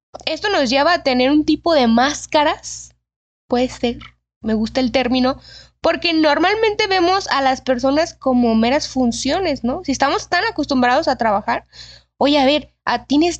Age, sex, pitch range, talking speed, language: 10-29, female, 245-315 Hz, 155 wpm, Spanish